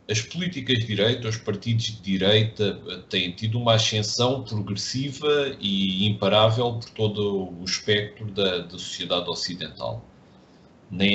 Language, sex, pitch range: Portuguese, male, 105-140 Hz